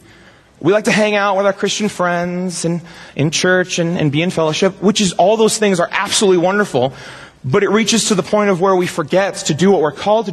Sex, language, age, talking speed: male, English, 30-49, 240 wpm